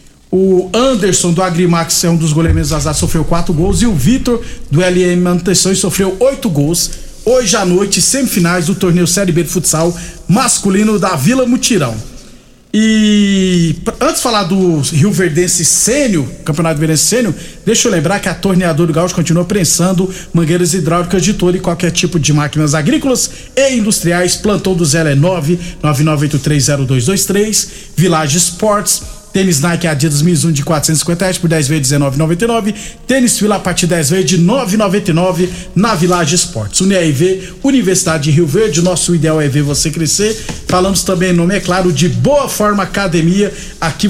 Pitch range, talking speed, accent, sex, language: 170-200 Hz, 165 wpm, Brazilian, male, Portuguese